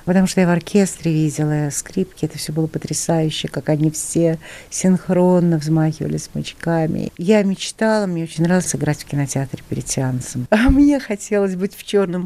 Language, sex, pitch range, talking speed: Russian, female, 155-200 Hz, 160 wpm